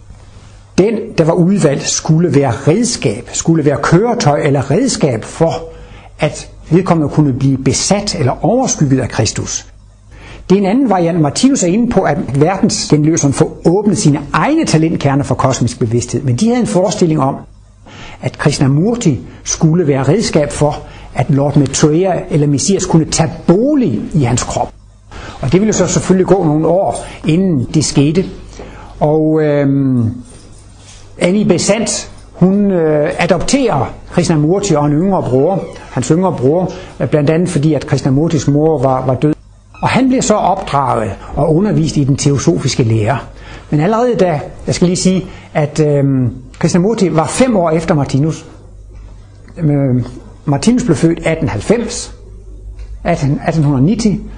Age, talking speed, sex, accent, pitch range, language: 60-79, 150 wpm, male, native, 125-175 Hz, Danish